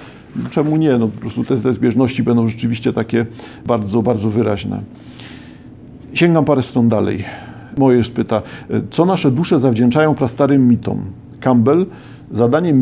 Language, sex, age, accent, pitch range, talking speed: Polish, male, 50-69, native, 115-135 Hz, 130 wpm